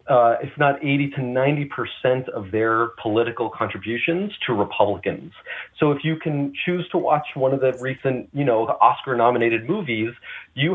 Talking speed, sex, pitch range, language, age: 165 wpm, male, 105-130 Hz, English, 30-49